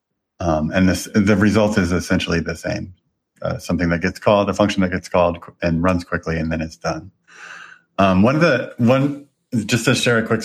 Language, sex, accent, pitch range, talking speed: English, male, American, 90-105 Hz, 215 wpm